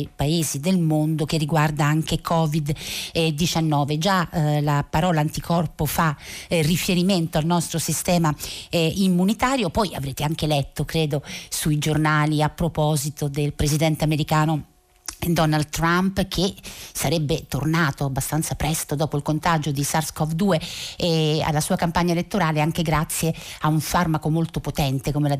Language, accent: Italian, native